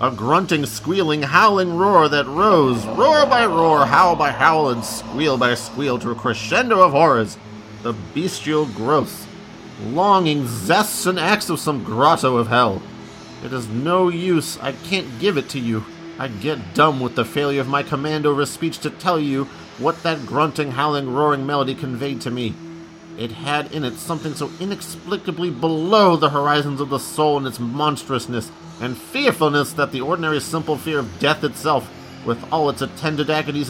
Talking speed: 175 wpm